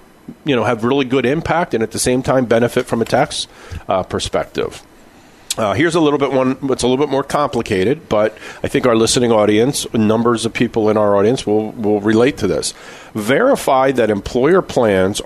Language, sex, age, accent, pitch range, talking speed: English, male, 50-69, American, 100-125 Hz, 195 wpm